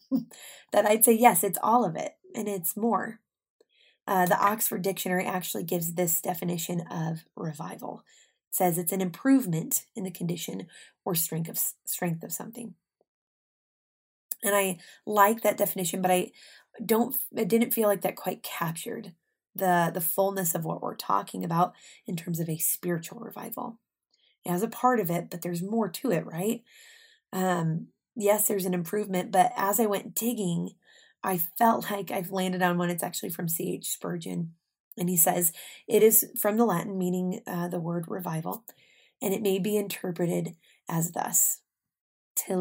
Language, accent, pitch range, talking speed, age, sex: English, American, 175-220 Hz, 170 wpm, 20-39, female